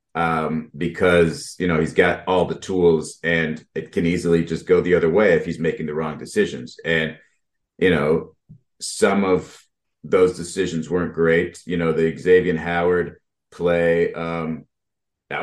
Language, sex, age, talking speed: English, male, 30-49, 160 wpm